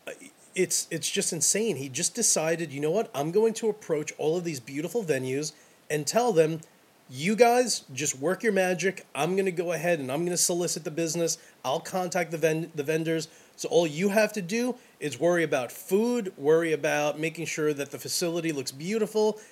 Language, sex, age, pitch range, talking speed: English, male, 30-49, 150-205 Hz, 200 wpm